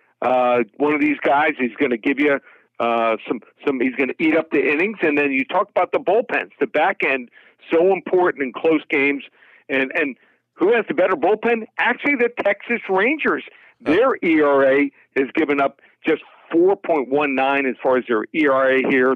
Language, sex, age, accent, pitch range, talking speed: English, male, 50-69, American, 125-160 Hz, 185 wpm